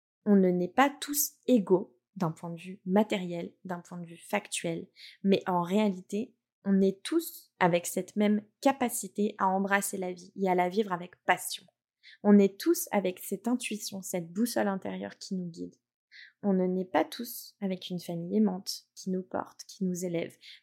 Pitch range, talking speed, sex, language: 180-215 Hz, 185 wpm, female, French